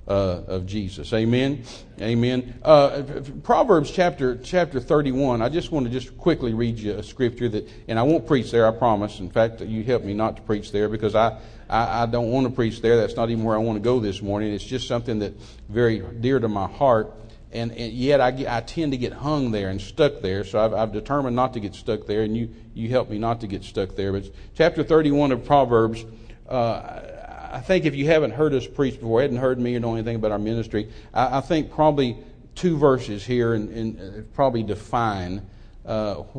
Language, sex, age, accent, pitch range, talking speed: English, male, 50-69, American, 105-125 Hz, 225 wpm